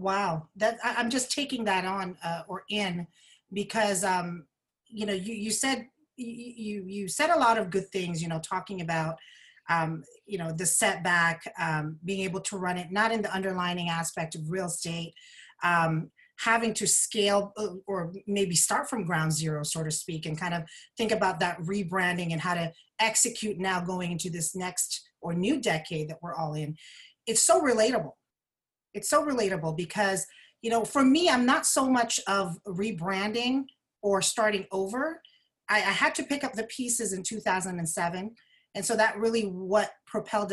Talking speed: 180 wpm